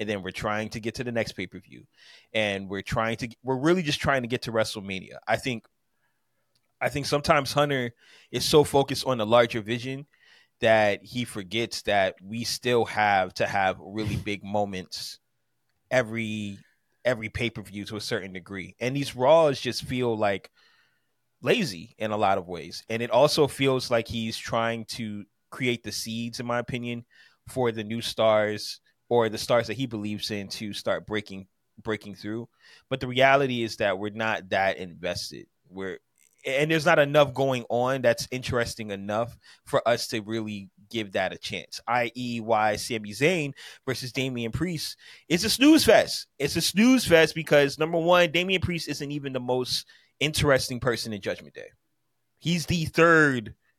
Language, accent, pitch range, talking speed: English, American, 110-135 Hz, 175 wpm